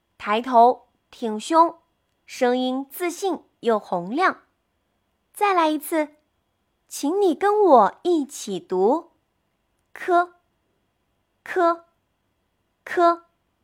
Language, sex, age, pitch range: Chinese, female, 20-39, 245-350 Hz